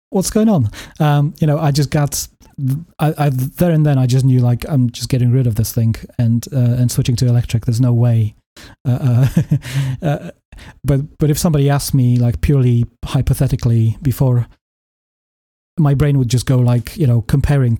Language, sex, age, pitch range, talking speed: English, male, 30-49, 115-140 Hz, 190 wpm